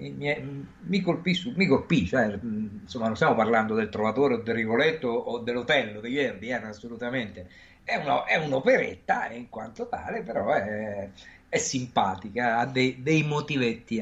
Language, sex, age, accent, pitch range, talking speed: Italian, male, 50-69, native, 100-145 Hz, 145 wpm